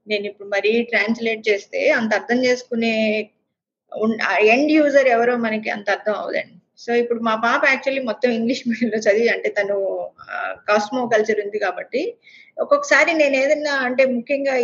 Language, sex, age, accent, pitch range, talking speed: Telugu, female, 20-39, native, 215-275 Hz, 145 wpm